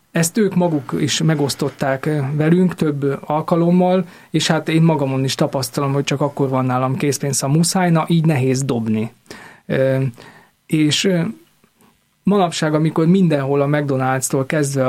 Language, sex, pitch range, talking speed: Hungarian, male, 140-170 Hz, 135 wpm